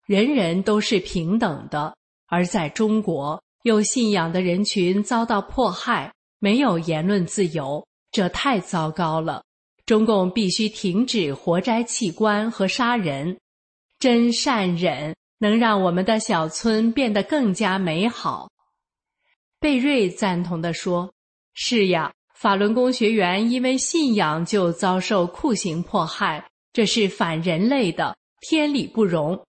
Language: English